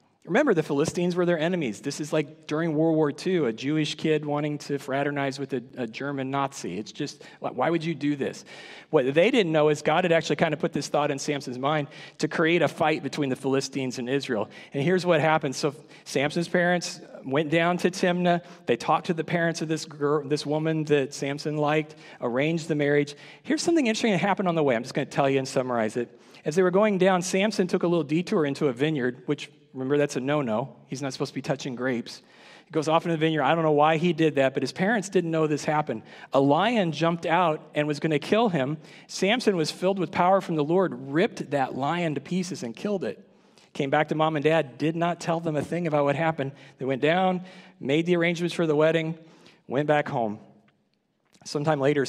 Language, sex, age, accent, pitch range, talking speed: English, male, 40-59, American, 140-170 Hz, 230 wpm